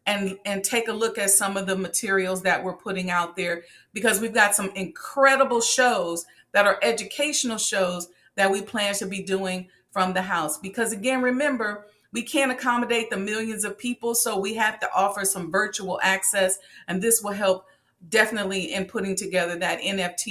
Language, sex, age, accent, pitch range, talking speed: English, female, 40-59, American, 195-240 Hz, 185 wpm